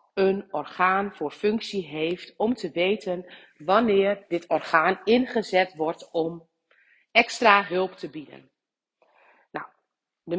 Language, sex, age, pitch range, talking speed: Dutch, female, 40-59, 180-230 Hz, 115 wpm